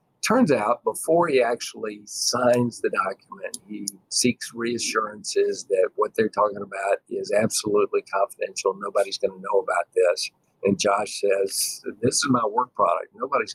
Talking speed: 145 wpm